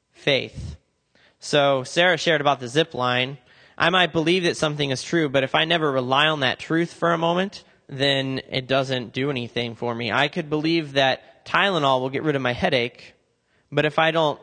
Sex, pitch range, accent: male, 130-165 Hz, American